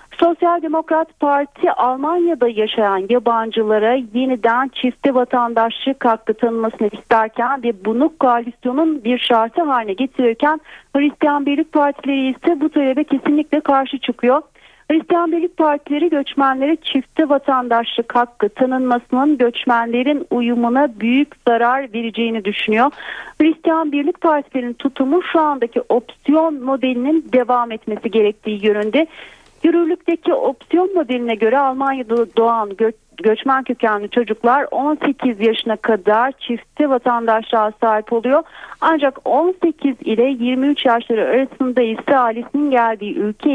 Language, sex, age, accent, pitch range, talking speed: Turkish, female, 40-59, native, 230-295 Hz, 110 wpm